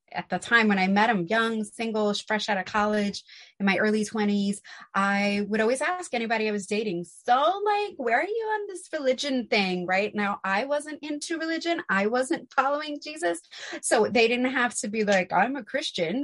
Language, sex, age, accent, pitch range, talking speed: English, female, 30-49, American, 195-270 Hz, 200 wpm